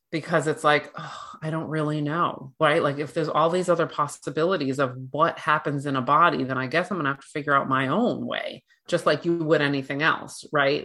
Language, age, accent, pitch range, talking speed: English, 30-49, American, 145-170 Hz, 230 wpm